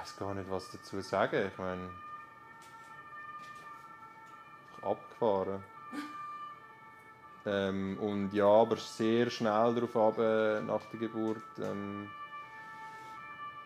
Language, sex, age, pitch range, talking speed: German, male, 20-39, 100-150 Hz, 100 wpm